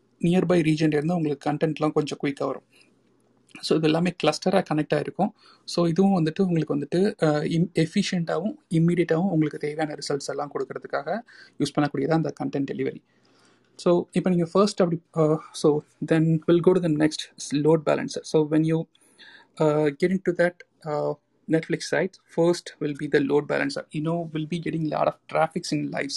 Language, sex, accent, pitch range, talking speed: Tamil, male, native, 150-170 Hz, 180 wpm